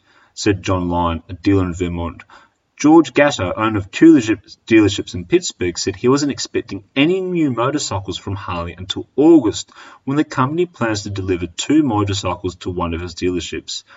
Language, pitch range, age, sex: English, 90-140 Hz, 30-49, male